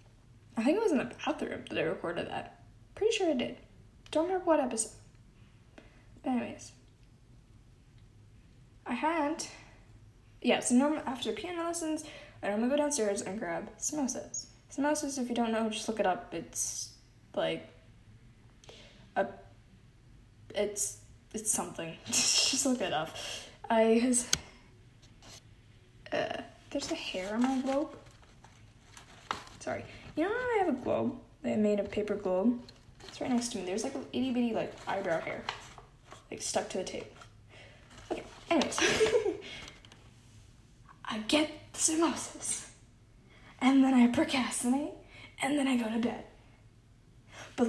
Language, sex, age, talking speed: English, female, 10-29, 135 wpm